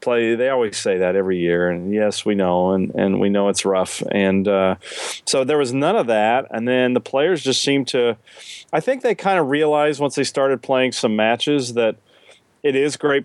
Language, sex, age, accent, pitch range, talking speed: English, male, 40-59, American, 105-135 Hz, 215 wpm